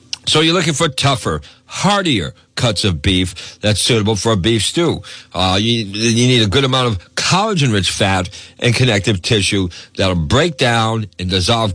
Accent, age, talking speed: American, 60-79, 170 wpm